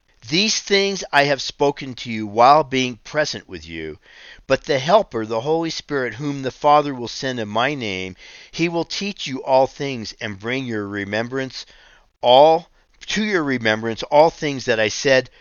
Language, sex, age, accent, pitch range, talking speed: English, male, 50-69, American, 105-150 Hz, 175 wpm